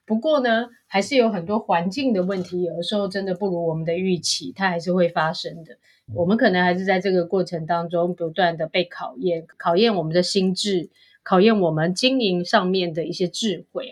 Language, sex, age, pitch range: Chinese, female, 30-49, 175-215 Hz